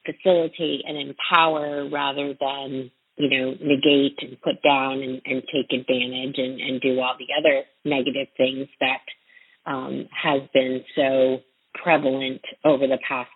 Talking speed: 145 wpm